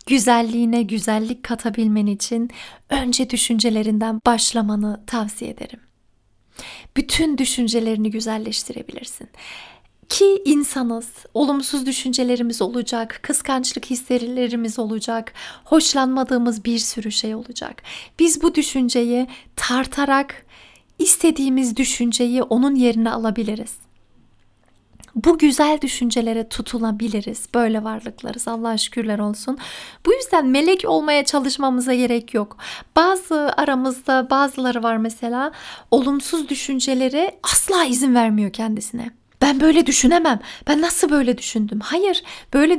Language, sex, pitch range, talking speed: Turkish, female, 230-280 Hz, 100 wpm